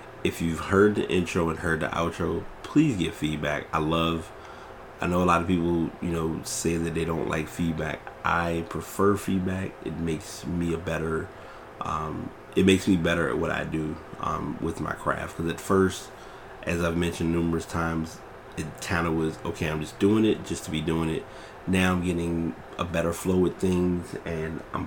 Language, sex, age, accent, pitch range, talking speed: English, male, 30-49, American, 80-90 Hz, 195 wpm